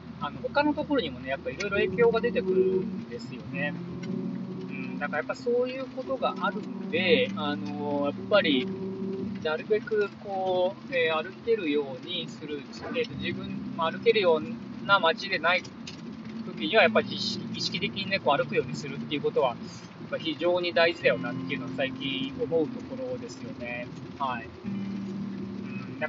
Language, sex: Japanese, male